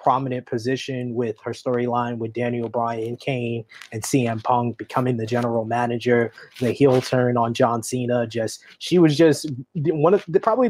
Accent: American